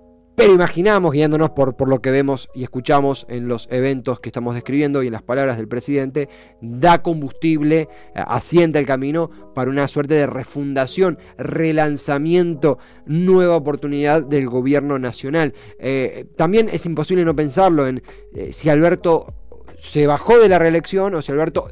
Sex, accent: male, Argentinian